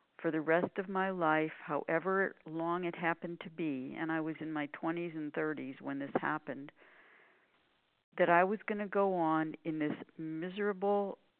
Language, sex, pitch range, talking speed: English, female, 155-190 Hz, 175 wpm